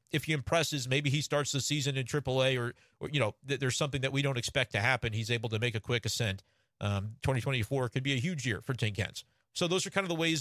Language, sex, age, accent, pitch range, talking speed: English, male, 40-59, American, 120-150 Hz, 260 wpm